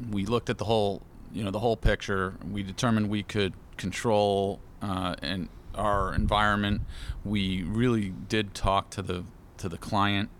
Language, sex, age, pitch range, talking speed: English, male, 40-59, 90-105 Hz, 160 wpm